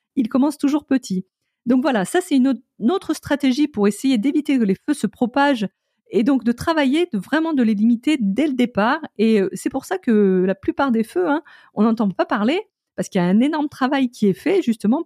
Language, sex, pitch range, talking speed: French, female, 195-275 Hz, 225 wpm